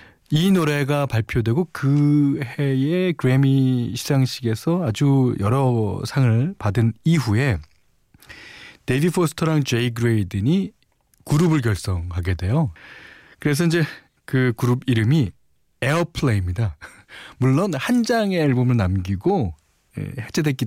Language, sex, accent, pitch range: Korean, male, native, 95-145 Hz